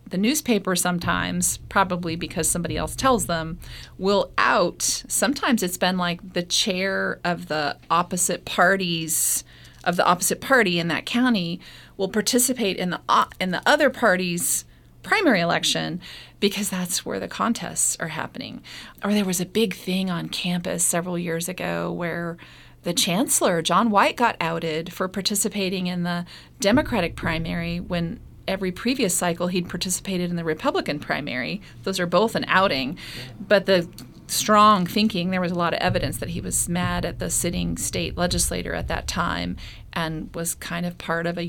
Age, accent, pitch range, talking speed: 30-49, American, 170-205 Hz, 165 wpm